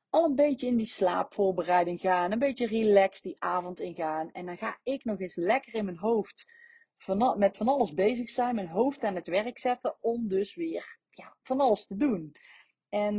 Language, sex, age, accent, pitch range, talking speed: Dutch, female, 40-59, Dutch, 195-240 Hz, 200 wpm